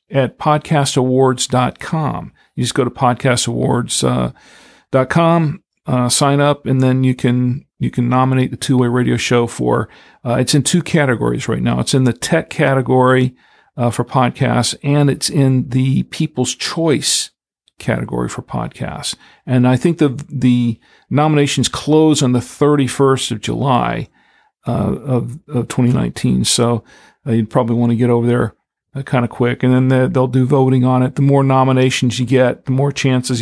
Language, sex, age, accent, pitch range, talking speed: English, male, 50-69, American, 125-140 Hz, 160 wpm